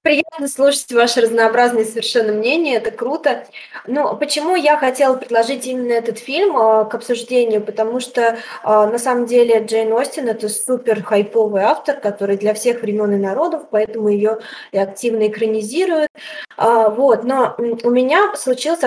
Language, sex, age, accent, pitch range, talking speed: Russian, female, 20-39, native, 215-250 Hz, 140 wpm